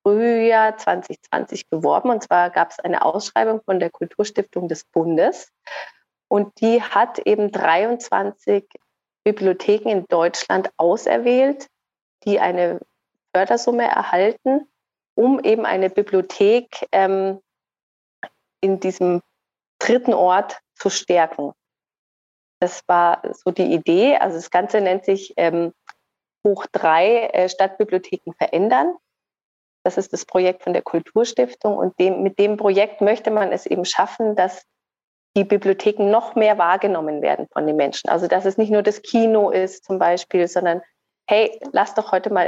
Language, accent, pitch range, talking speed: German, German, 175-215 Hz, 135 wpm